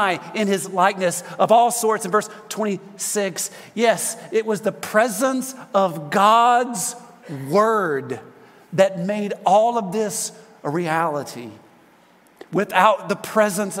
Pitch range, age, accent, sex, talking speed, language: 175-220 Hz, 40-59, American, male, 115 wpm, English